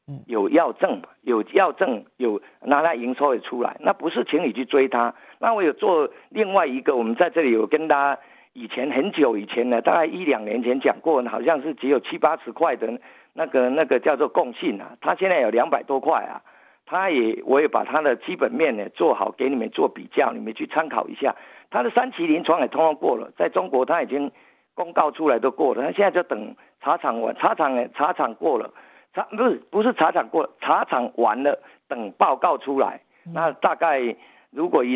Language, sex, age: Chinese, male, 50-69